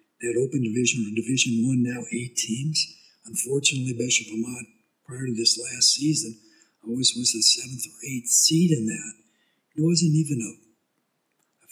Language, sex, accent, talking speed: English, male, American, 160 wpm